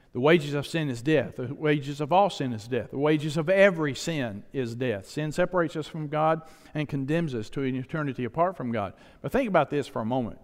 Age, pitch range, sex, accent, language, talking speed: 50-69, 140-185 Hz, male, American, English, 235 wpm